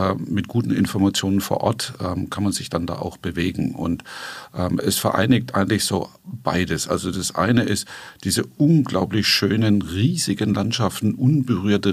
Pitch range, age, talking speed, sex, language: 95-120 Hz, 50-69, 150 wpm, male, German